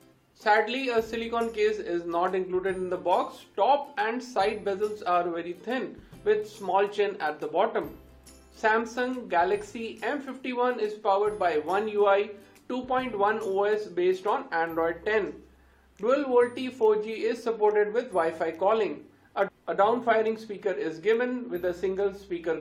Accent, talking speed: Indian, 145 wpm